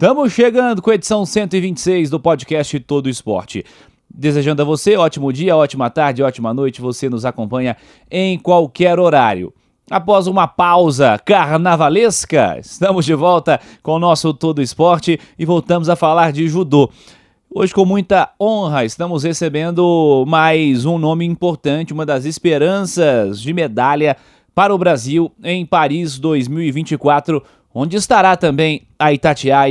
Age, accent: 30-49, Brazilian